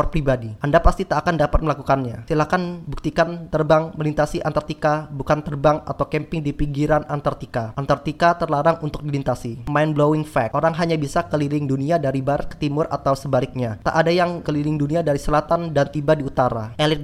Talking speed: 175 wpm